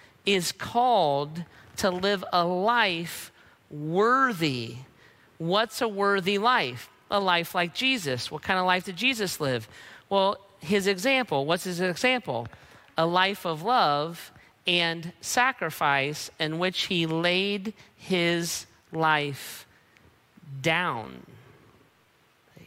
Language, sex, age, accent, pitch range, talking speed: English, male, 40-59, American, 140-185 Hz, 110 wpm